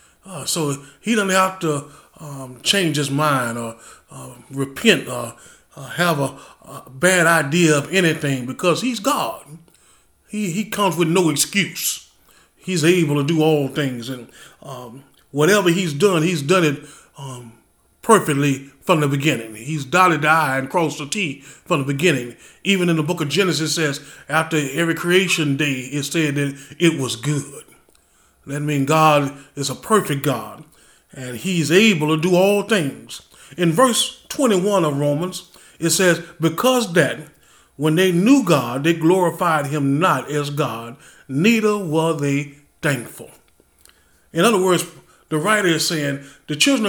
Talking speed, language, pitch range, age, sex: 160 wpm, English, 140-180 Hz, 20-39, male